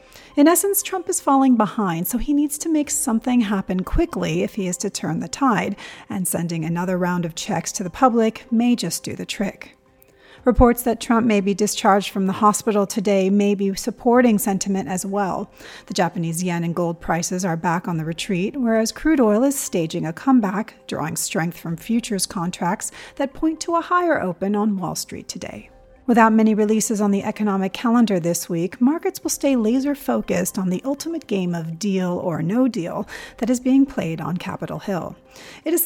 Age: 40-59